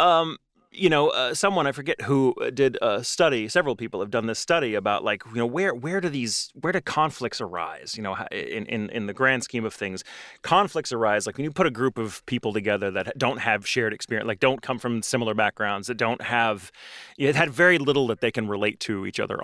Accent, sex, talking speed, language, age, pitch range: American, male, 240 wpm, English, 30-49, 115-185 Hz